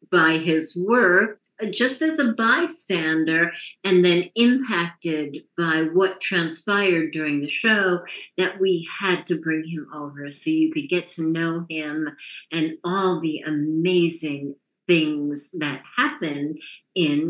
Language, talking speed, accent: English, 130 wpm, American